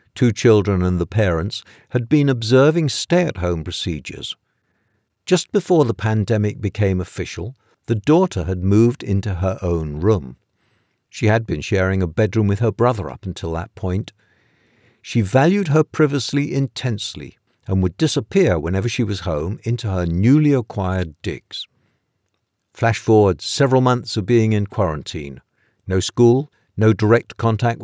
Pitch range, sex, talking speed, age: 95-125 Hz, male, 145 wpm, 60-79